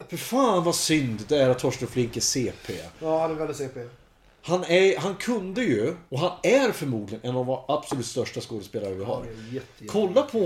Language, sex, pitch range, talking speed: Swedish, male, 120-165 Hz, 185 wpm